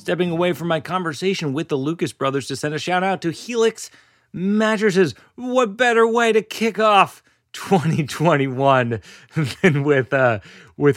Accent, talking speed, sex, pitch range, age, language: American, 140 wpm, male, 125-175 Hz, 30-49, English